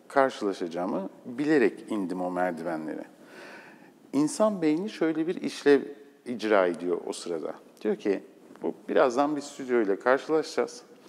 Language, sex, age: Turkish, male, 50-69